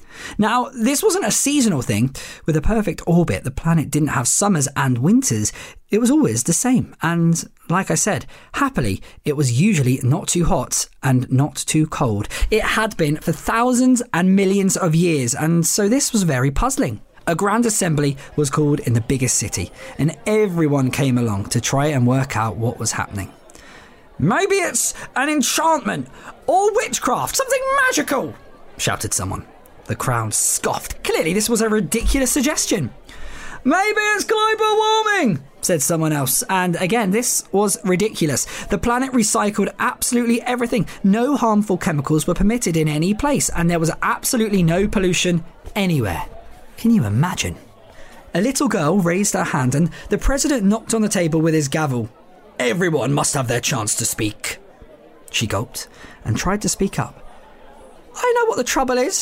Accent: British